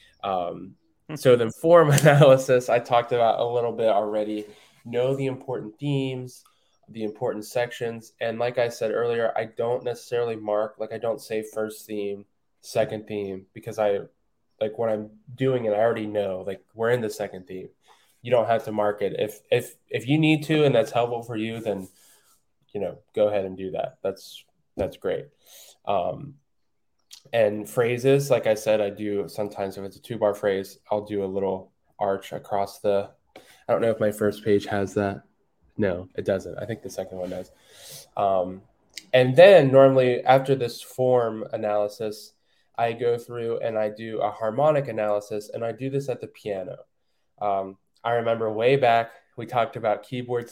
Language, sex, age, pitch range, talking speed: English, male, 10-29, 105-120 Hz, 180 wpm